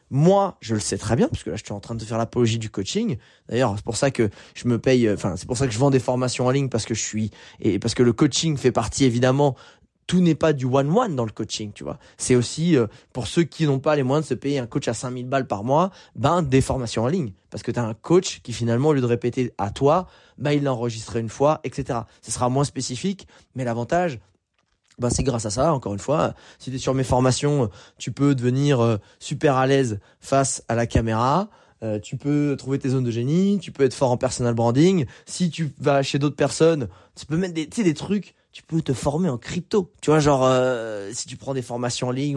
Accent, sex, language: French, male, French